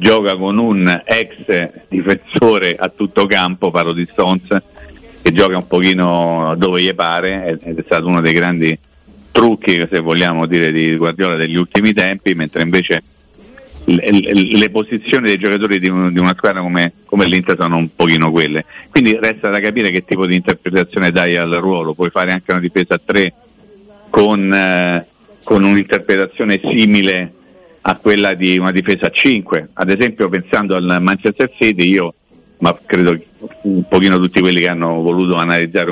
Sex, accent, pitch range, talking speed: male, native, 85-100 Hz, 160 wpm